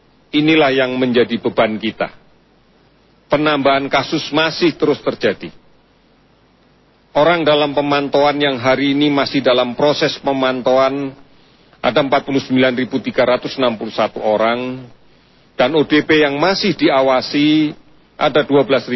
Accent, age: native, 40-59